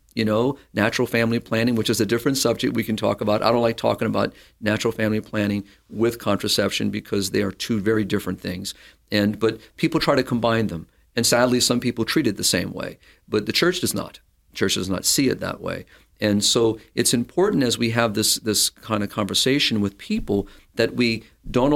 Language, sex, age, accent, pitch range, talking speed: English, male, 50-69, American, 105-120 Hz, 210 wpm